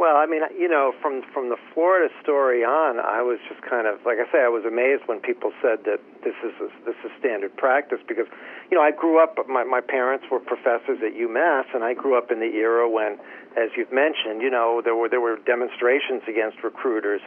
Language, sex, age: English, male, 50-69